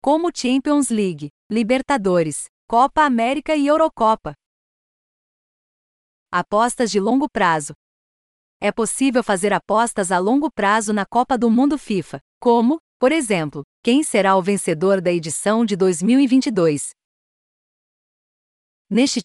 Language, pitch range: Portuguese, 190-255 Hz